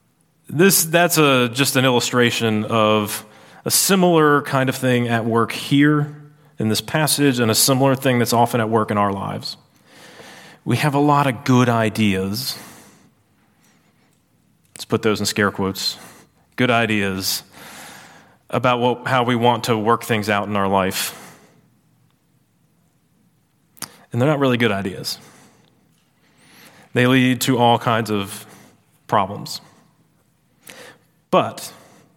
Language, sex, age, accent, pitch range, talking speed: English, male, 30-49, American, 110-140 Hz, 130 wpm